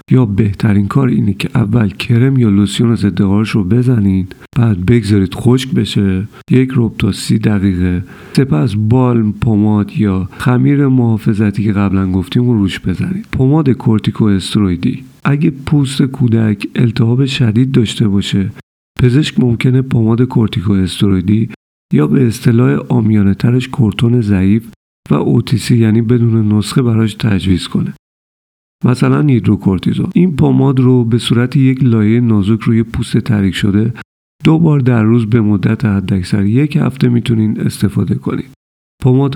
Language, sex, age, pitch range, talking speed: Persian, male, 50-69, 105-125 Hz, 135 wpm